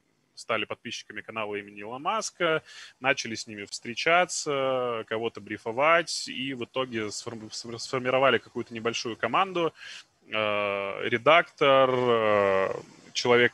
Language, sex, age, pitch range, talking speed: Russian, male, 20-39, 105-130 Hz, 95 wpm